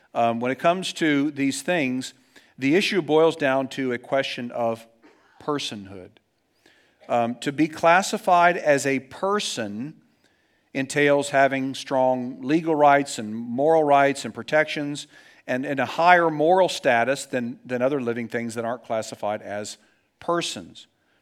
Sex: male